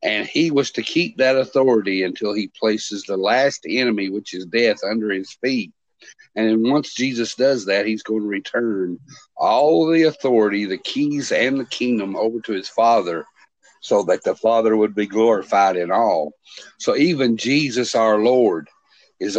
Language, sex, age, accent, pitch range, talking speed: English, male, 50-69, American, 105-160 Hz, 170 wpm